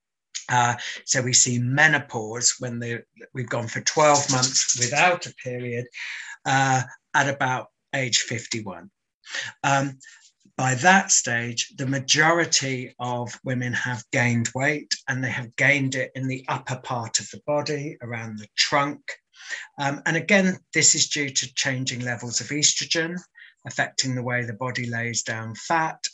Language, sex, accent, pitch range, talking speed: English, male, British, 120-145 Hz, 145 wpm